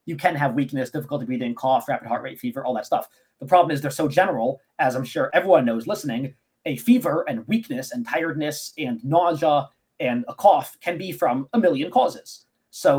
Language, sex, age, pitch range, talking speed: English, male, 30-49, 135-185 Hz, 205 wpm